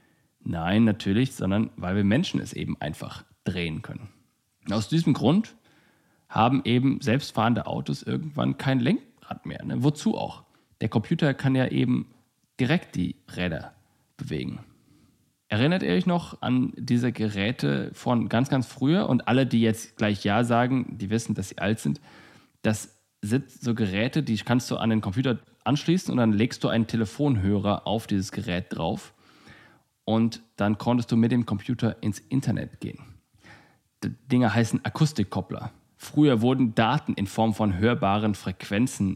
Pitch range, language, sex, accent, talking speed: 100-125 Hz, German, male, German, 155 wpm